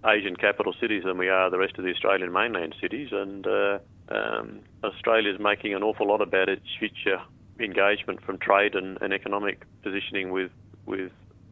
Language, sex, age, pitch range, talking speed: English, male, 40-59, 95-105 Hz, 170 wpm